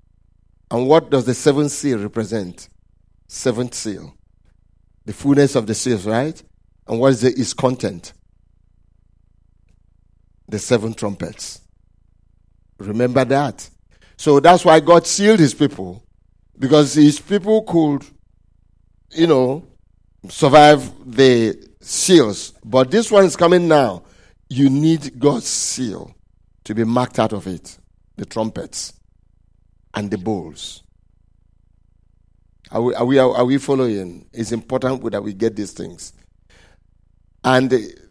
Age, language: 50-69, English